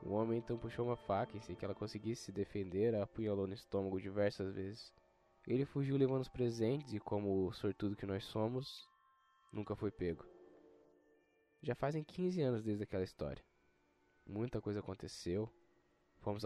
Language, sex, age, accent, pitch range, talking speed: Portuguese, male, 10-29, Brazilian, 95-115 Hz, 165 wpm